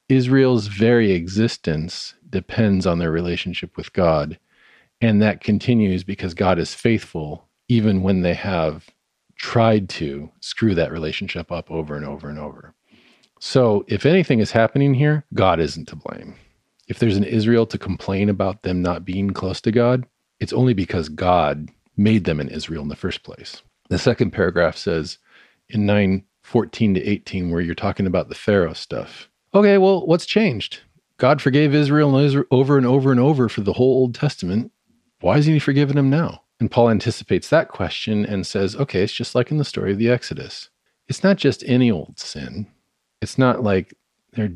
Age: 40-59